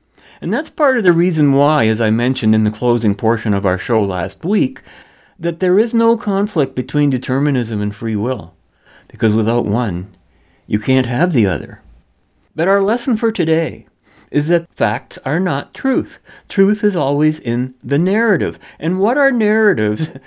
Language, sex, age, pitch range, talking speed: English, male, 40-59, 110-170 Hz, 170 wpm